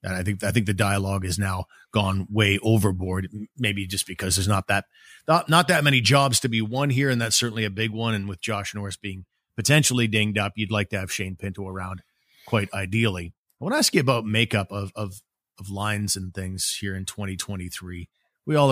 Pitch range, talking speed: 100-130 Hz, 225 wpm